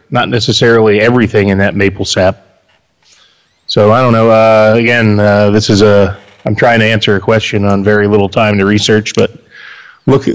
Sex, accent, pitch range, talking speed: male, American, 100-115 Hz, 180 wpm